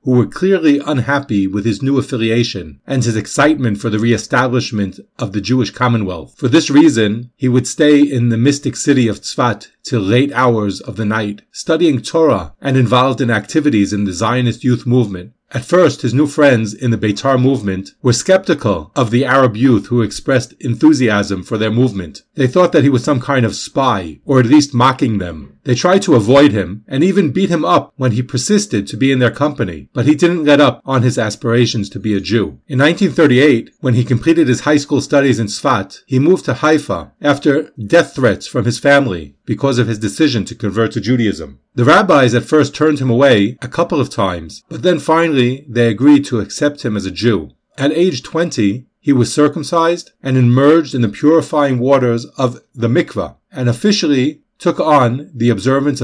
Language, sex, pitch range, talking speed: English, male, 110-145 Hz, 195 wpm